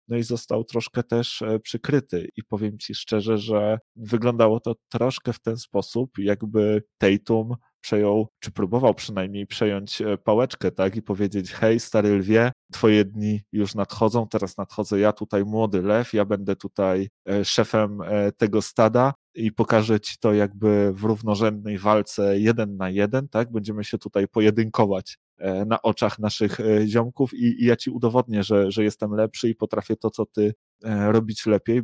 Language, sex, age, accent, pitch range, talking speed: Polish, male, 20-39, native, 100-115 Hz, 155 wpm